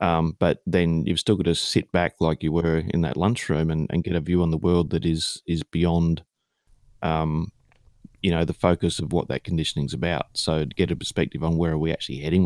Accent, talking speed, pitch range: Australian, 230 wpm, 80-100 Hz